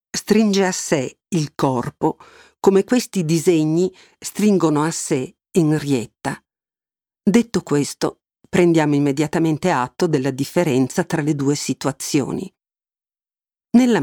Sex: female